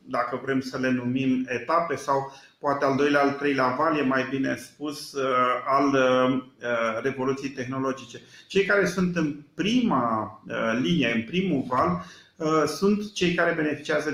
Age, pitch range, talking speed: 40-59, 135-165 Hz, 140 wpm